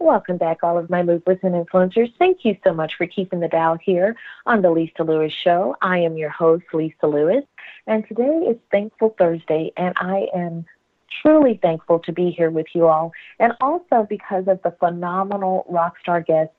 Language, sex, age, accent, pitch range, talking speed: English, female, 40-59, American, 165-210 Hz, 190 wpm